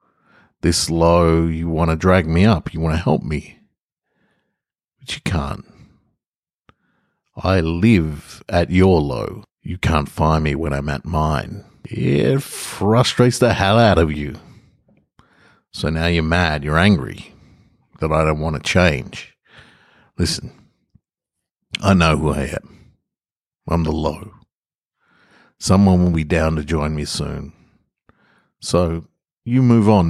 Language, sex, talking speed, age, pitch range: English, male, 140 wpm, 50-69, 75-95 Hz